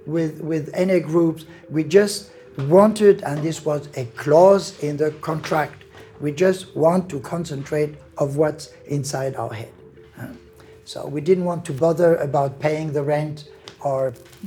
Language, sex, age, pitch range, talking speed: Slovak, male, 60-79, 135-170 Hz, 150 wpm